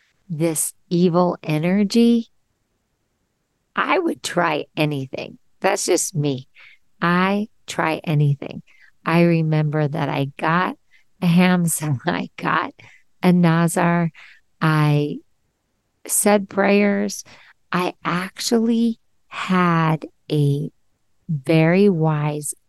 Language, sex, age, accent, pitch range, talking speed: English, female, 50-69, American, 155-190 Hz, 85 wpm